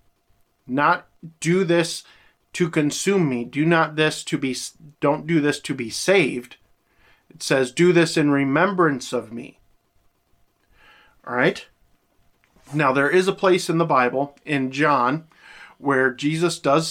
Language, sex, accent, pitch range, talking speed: English, male, American, 130-165 Hz, 140 wpm